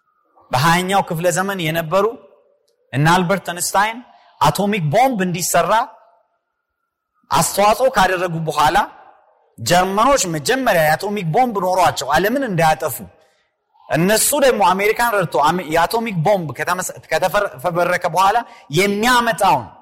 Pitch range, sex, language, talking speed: 155-230 Hz, male, Amharic, 90 wpm